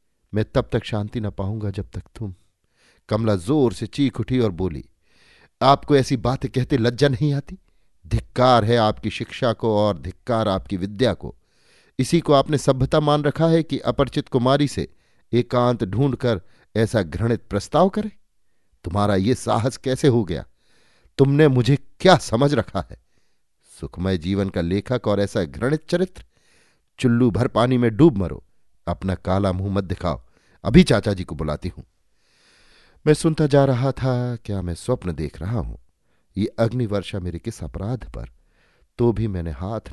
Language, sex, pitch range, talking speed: Hindi, male, 100-145 Hz, 160 wpm